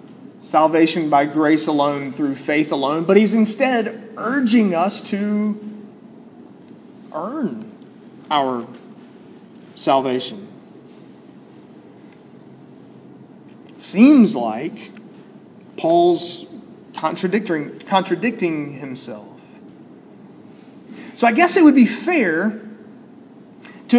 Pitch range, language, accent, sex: 185-255 Hz, English, American, male